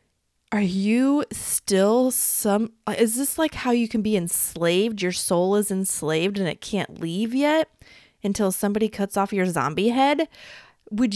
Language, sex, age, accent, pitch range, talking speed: English, female, 20-39, American, 165-225 Hz, 155 wpm